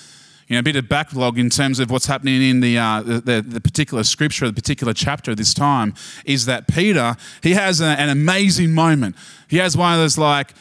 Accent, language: Australian, English